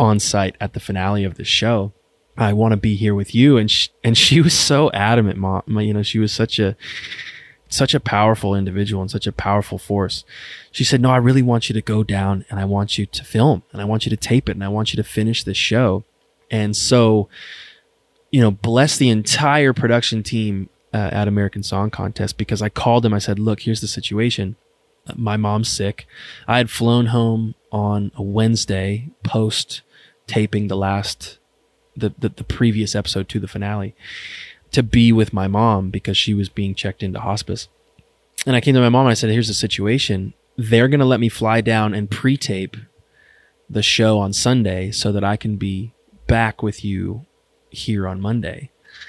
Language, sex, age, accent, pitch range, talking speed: English, male, 20-39, American, 100-115 Hz, 200 wpm